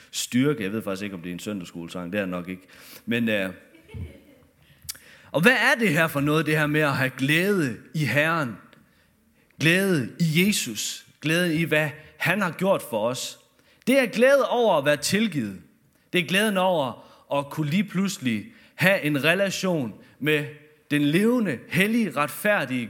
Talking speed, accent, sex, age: 175 wpm, native, male, 30-49